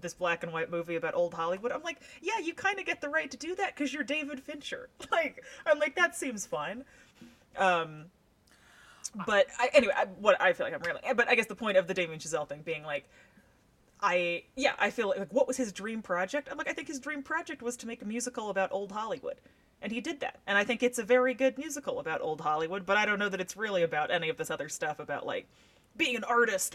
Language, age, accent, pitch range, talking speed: English, 30-49, American, 175-275 Hz, 250 wpm